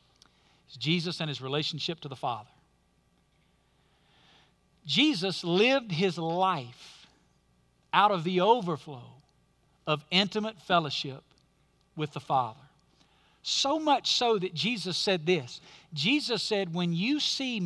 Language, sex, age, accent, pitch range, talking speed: English, male, 50-69, American, 155-205 Hz, 115 wpm